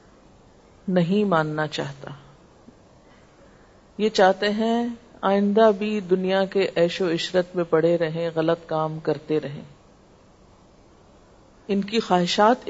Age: 50-69